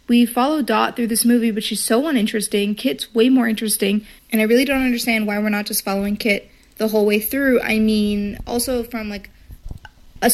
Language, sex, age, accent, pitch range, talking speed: English, female, 30-49, American, 215-275 Hz, 205 wpm